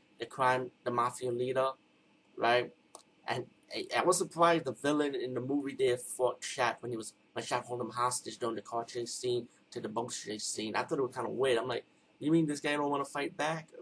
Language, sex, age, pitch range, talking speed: English, male, 30-49, 115-140 Hz, 235 wpm